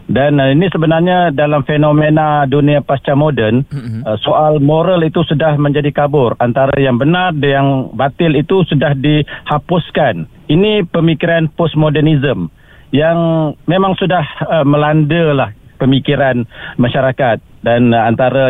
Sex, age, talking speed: male, 50-69, 110 wpm